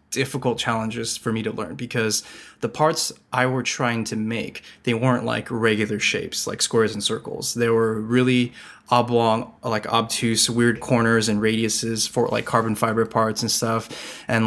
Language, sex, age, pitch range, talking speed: English, male, 20-39, 110-125 Hz, 170 wpm